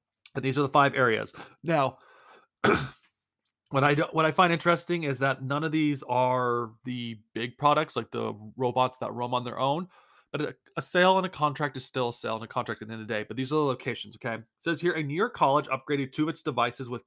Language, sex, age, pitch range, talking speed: English, male, 30-49, 120-150 Hz, 240 wpm